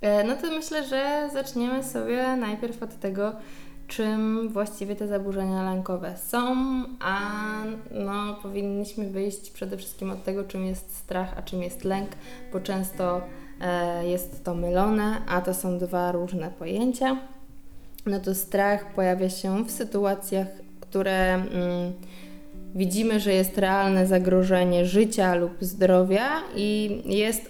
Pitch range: 185-215 Hz